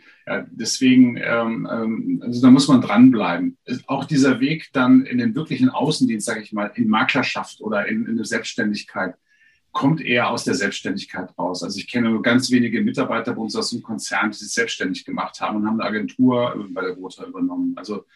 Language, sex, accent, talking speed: German, male, German, 195 wpm